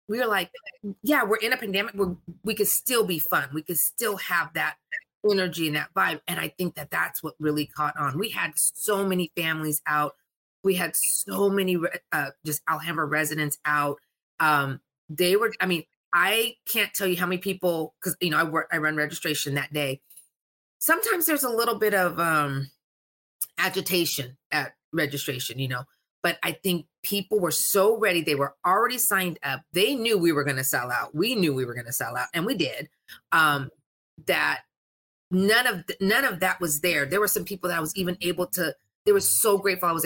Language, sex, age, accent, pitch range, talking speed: English, female, 30-49, American, 150-200 Hz, 210 wpm